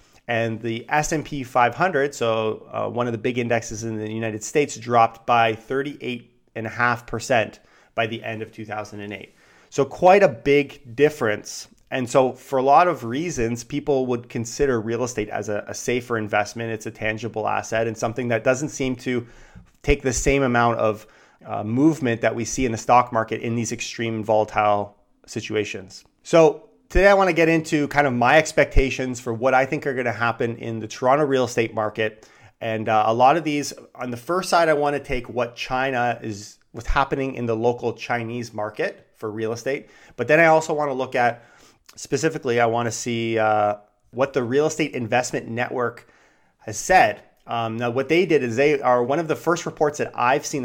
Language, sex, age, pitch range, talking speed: English, male, 30-49, 115-140 Hz, 200 wpm